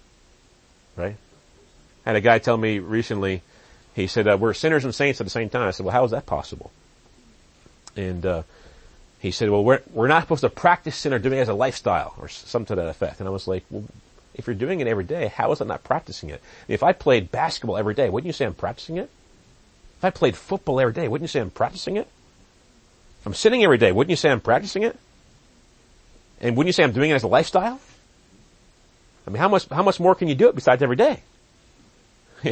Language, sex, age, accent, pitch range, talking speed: English, male, 40-59, American, 105-145 Hz, 235 wpm